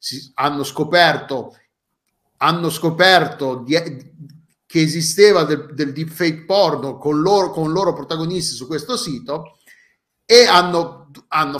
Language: Italian